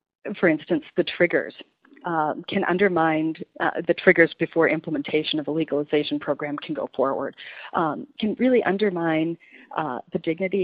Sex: female